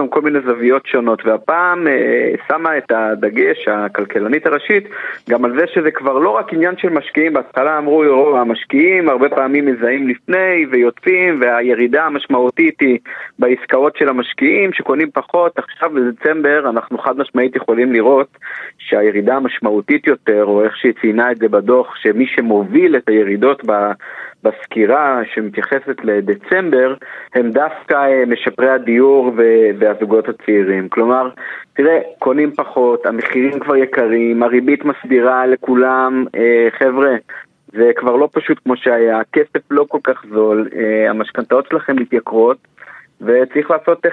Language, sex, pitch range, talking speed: Hebrew, male, 115-155 Hz, 135 wpm